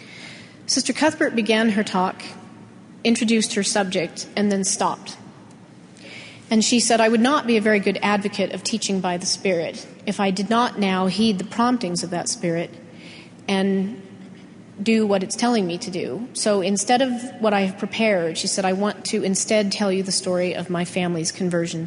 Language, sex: English, female